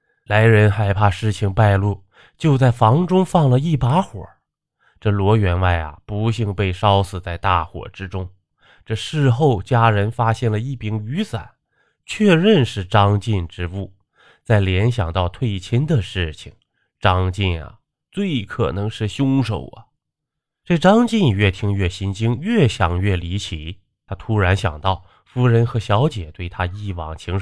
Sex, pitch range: male, 95-140 Hz